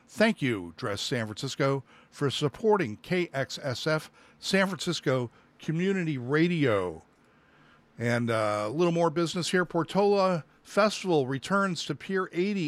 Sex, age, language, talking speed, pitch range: male, 50-69, English, 120 wpm, 135-180 Hz